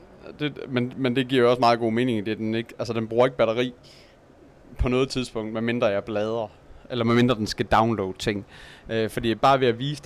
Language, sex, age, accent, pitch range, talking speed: Danish, male, 30-49, native, 110-130 Hz, 215 wpm